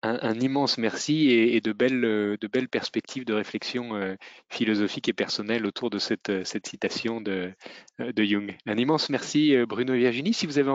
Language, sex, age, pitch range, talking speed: French, male, 20-39, 105-125 Hz, 190 wpm